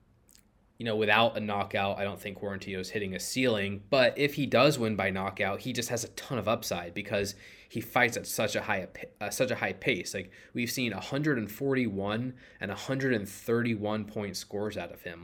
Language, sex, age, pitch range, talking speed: English, male, 20-39, 100-120 Hz, 195 wpm